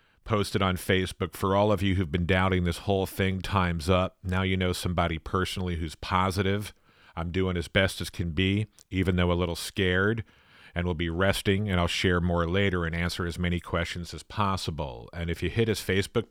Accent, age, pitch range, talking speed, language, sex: American, 40-59, 85-100 Hz, 205 wpm, English, male